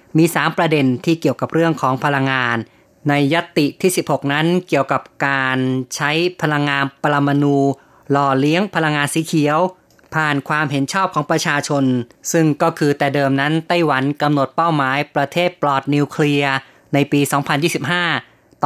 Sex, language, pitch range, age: female, Thai, 135-160 Hz, 20-39